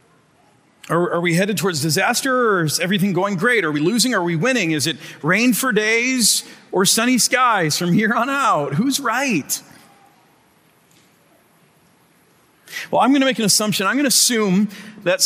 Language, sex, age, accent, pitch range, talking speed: English, male, 40-59, American, 155-205 Hz, 175 wpm